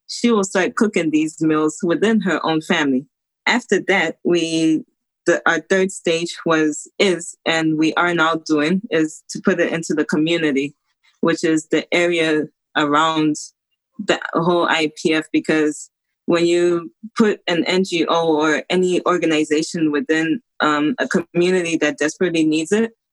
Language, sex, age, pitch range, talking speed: English, female, 20-39, 155-180 Hz, 145 wpm